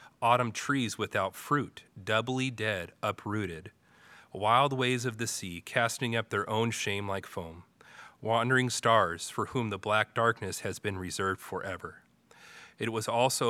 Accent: American